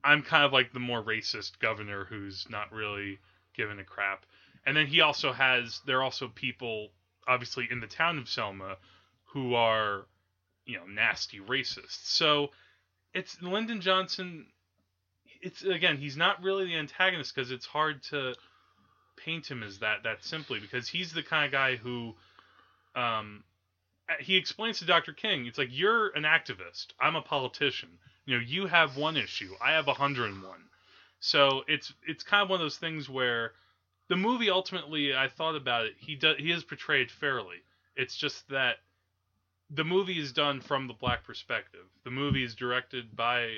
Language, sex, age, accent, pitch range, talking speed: English, male, 20-39, American, 110-150 Hz, 170 wpm